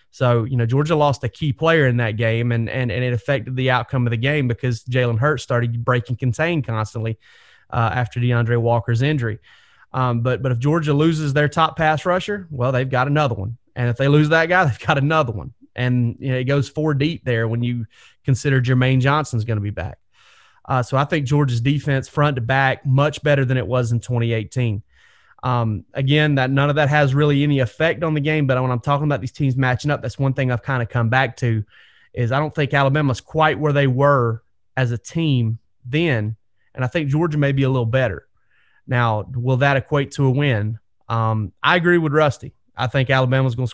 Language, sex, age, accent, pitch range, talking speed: English, male, 30-49, American, 120-145 Hz, 220 wpm